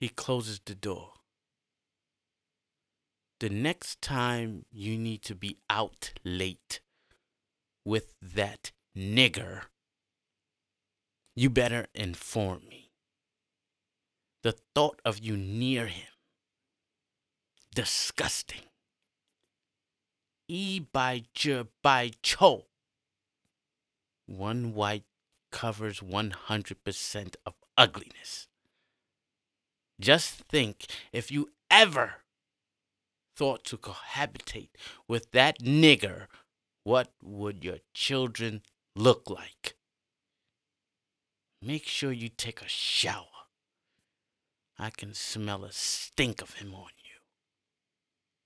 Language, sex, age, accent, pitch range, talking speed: English, male, 30-49, American, 100-125 Hz, 90 wpm